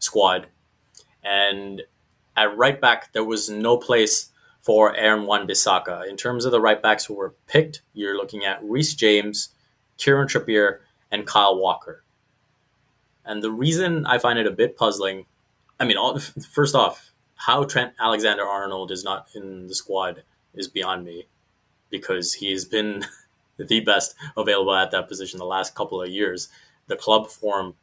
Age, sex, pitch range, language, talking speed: 20-39, male, 100-140 Hz, English, 160 wpm